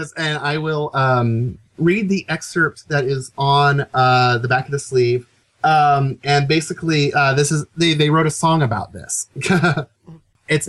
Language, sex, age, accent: English, male, 30-49, American